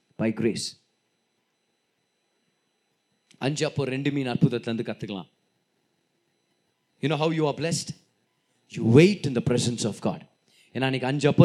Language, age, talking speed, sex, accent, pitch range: Tamil, 30-49, 120 wpm, male, native, 125-200 Hz